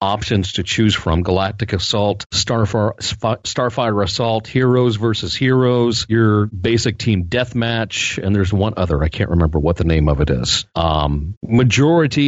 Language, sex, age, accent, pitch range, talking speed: English, male, 40-59, American, 90-115 Hz, 150 wpm